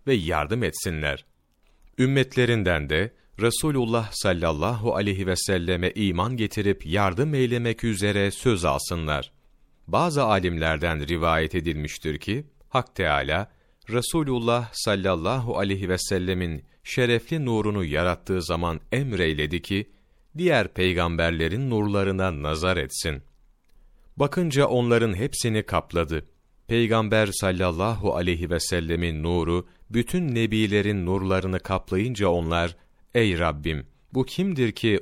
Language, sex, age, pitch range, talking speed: Turkish, male, 40-59, 85-115 Hz, 105 wpm